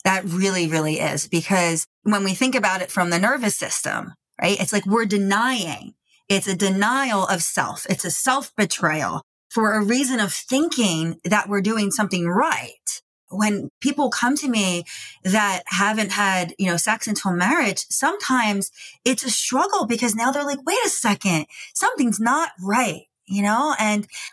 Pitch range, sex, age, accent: 200-265 Hz, female, 30-49, American